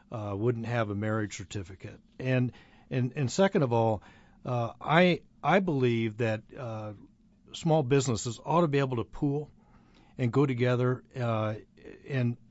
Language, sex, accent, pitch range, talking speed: English, male, American, 115-140 Hz, 150 wpm